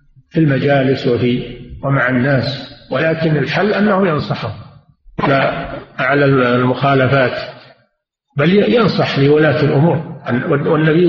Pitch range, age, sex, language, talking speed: 145-190 Hz, 50-69, male, Arabic, 90 wpm